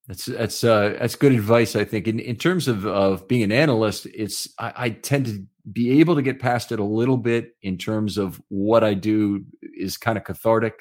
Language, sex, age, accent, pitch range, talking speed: English, male, 40-59, American, 95-115 Hz, 220 wpm